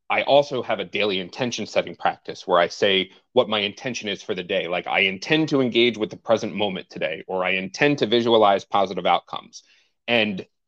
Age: 30-49